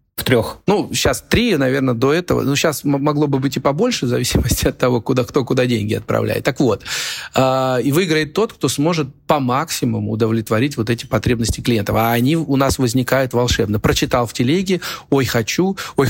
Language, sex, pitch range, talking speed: Russian, male, 115-145 Hz, 190 wpm